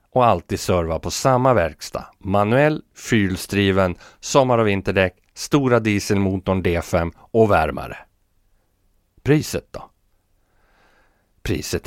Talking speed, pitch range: 95 wpm, 85-110 Hz